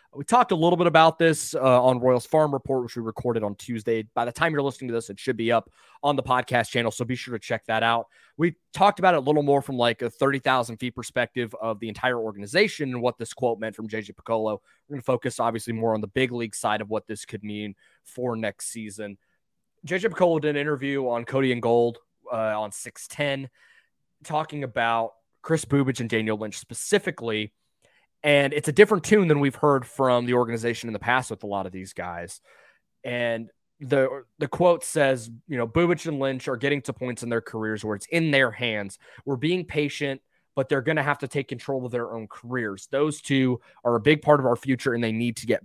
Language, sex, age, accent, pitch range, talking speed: English, male, 20-39, American, 115-145 Hz, 230 wpm